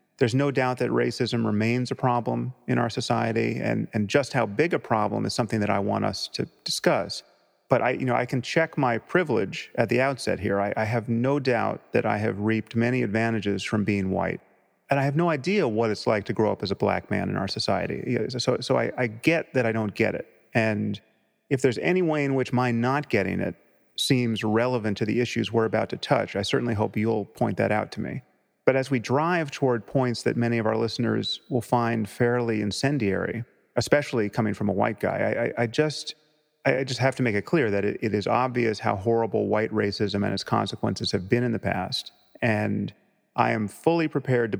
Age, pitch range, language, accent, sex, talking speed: 30-49, 105-125 Hz, English, American, male, 220 wpm